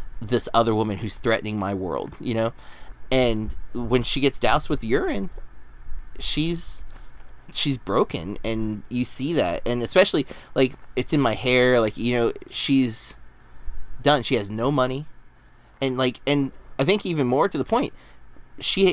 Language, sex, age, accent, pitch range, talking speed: English, male, 20-39, American, 105-135 Hz, 160 wpm